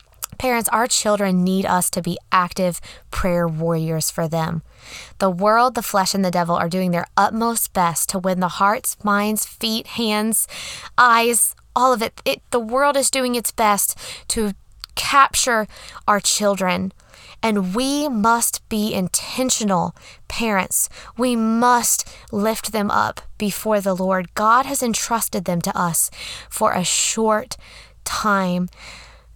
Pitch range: 185-235 Hz